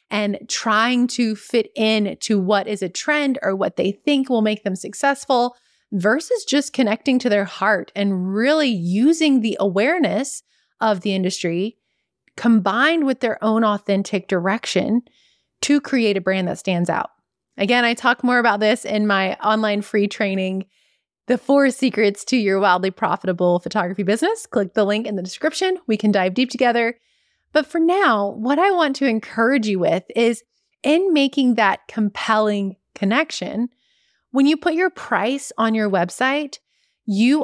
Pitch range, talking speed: 200-265 Hz, 160 wpm